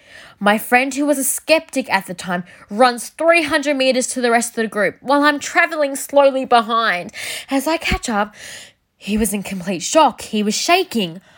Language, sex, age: English, female, 10-29